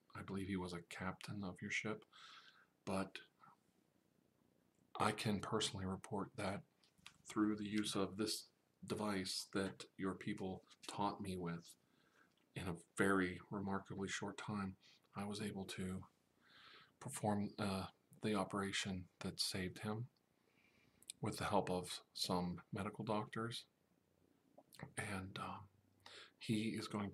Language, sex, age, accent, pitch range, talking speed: English, male, 40-59, American, 95-110 Hz, 125 wpm